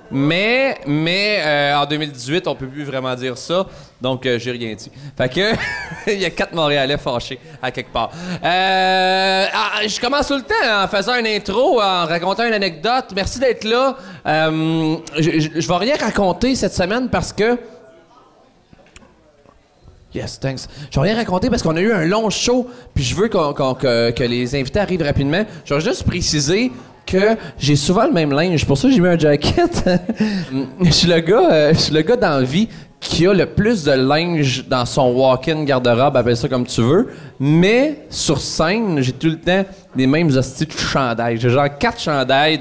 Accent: Canadian